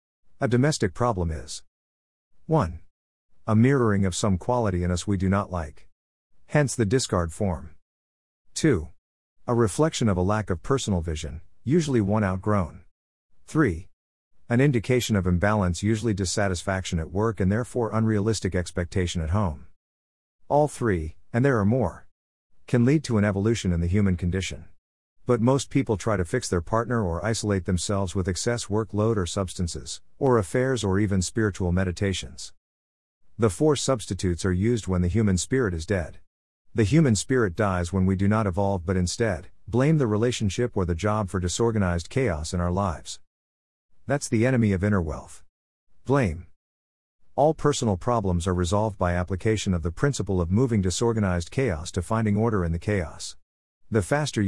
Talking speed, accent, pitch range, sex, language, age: 160 wpm, American, 85-115 Hz, male, English, 50-69